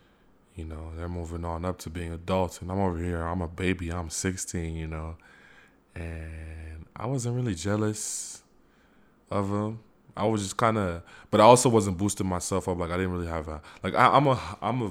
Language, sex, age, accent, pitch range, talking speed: English, male, 20-39, American, 80-95 Hz, 200 wpm